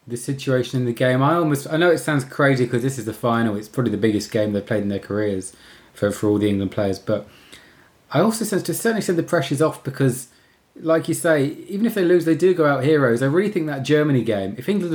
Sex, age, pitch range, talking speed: male, 20-39, 105-135 Hz, 255 wpm